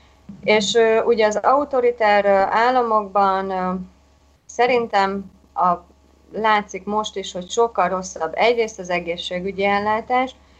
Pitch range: 180-230 Hz